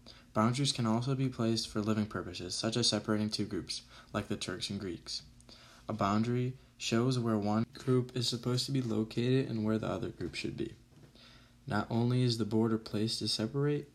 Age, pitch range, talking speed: 20-39, 110-125 Hz, 190 wpm